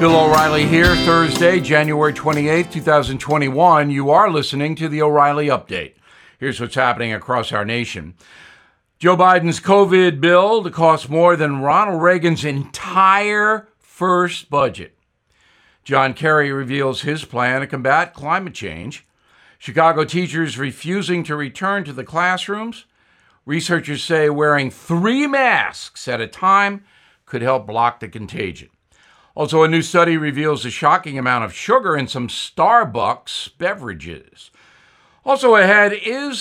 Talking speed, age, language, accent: 130 wpm, 60-79, English, American